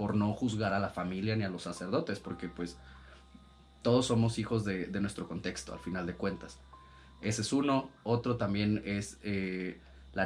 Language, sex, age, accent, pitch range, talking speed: Spanish, male, 30-49, Mexican, 95-120 Hz, 180 wpm